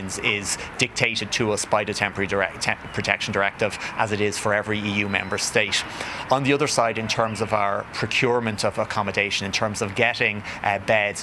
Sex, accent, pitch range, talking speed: male, Irish, 100-115 Hz, 180 wpm